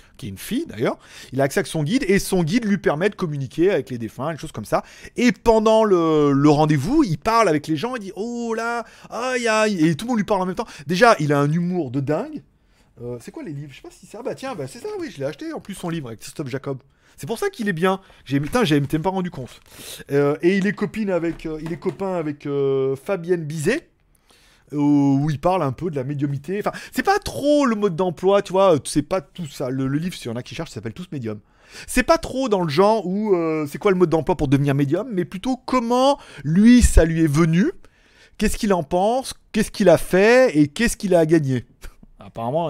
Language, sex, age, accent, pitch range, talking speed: French, male, 30-49, French, 145-215 Hz, 260 wpm